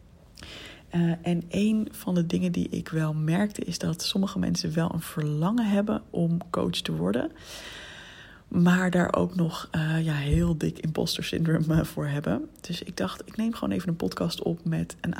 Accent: Dutch